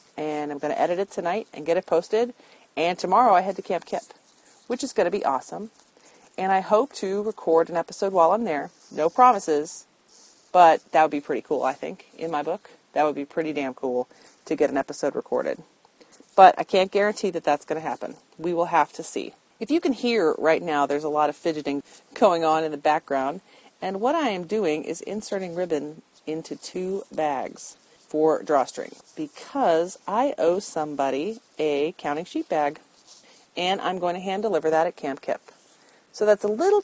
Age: 40-59